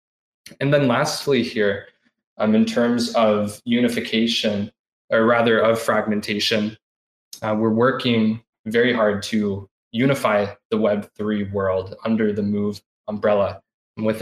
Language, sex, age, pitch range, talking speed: English, male, 20-39, 110-120 Hz, 120 wpm